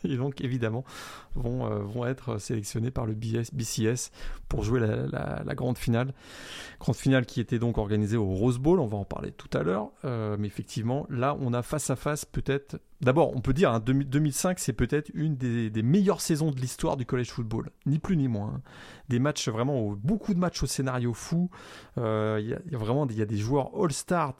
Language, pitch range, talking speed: French, 115-145 Hz, 220 wpm